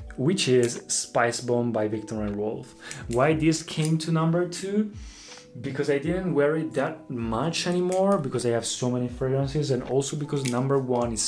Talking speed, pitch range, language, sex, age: 180 wpm, 120-155 Hz, Italian, male, 20-39